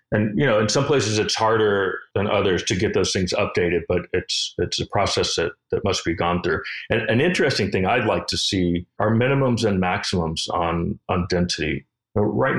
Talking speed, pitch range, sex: 200 wpm, 85-105 Hz, male